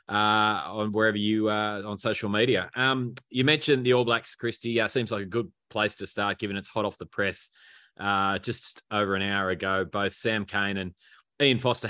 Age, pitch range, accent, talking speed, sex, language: 20-39, 95-110 Hz, Australian, 215 wpm, male, English